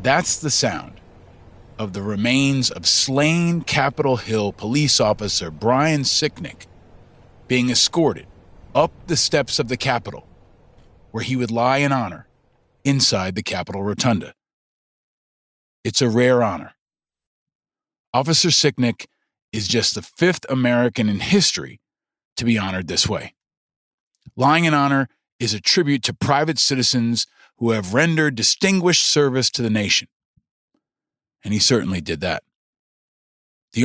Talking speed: 130 wpm